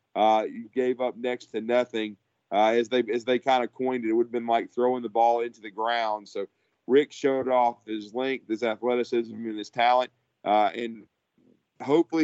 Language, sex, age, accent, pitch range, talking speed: English, male, 40-59, American, 115-125 Hz, 200 wpm